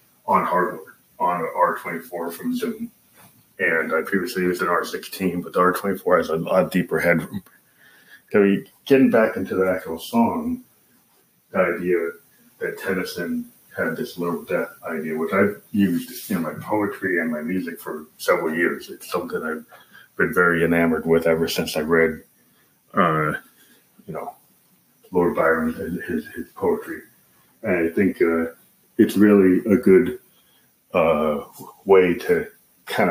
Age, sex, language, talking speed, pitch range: 30-49, male, English, 145 wpm, 90-120 Hz